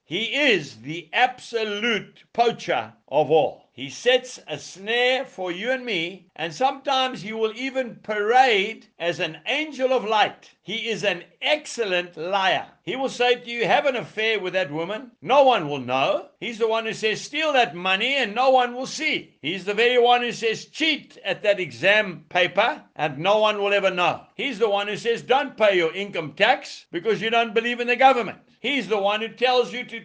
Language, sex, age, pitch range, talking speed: English, male, 60-79, 175-245 Hz, 200 wpm